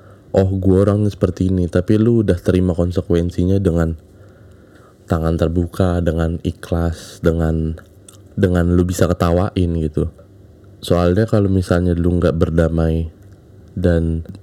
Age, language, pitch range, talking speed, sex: 20-39, Indonesian, 85-100 Hz, 110 wpm, male